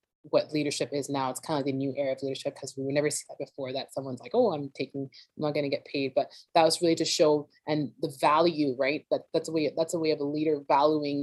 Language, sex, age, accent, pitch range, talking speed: English, female, 20-39, American, 140-160 Hz, 255 wpm